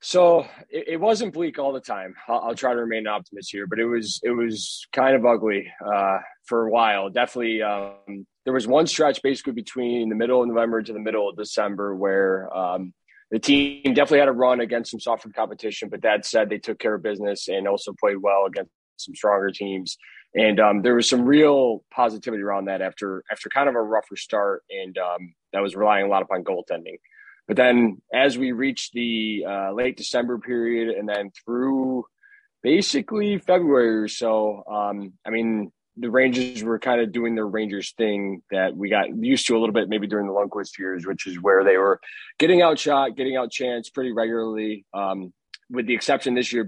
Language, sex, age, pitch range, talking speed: English, male, 20-39, 100-130 Hz, 205 wpm